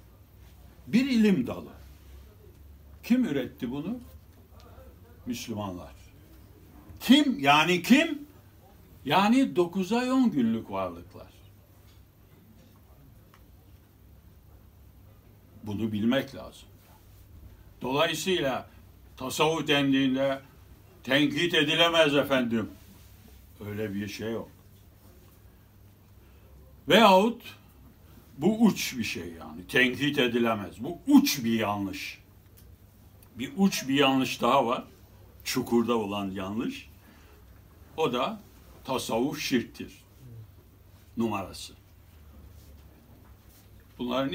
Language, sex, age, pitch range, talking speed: Turkish, male, 60-79, 90-115 Hz, 75 wpm